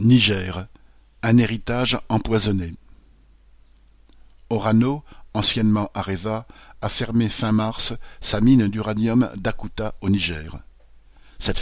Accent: French